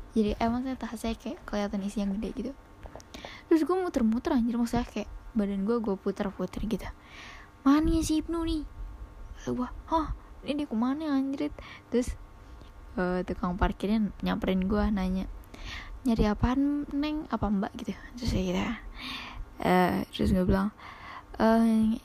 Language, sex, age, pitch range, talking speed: Indonesian, female, 10-29, 195-245 Hz, 140 wpm